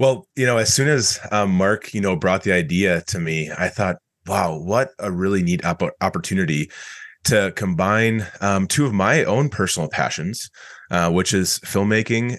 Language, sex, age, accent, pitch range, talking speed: English, male, 20-39, American, 90-105 Hz, 175 wpm